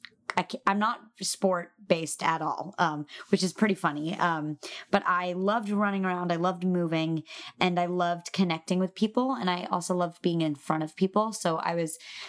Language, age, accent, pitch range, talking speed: English, 20-39, American, 160-185 Hz, 185 wpm